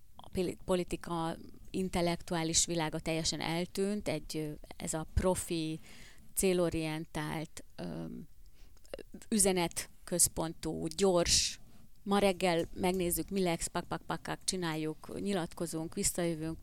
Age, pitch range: 30-49, 160-185 Hz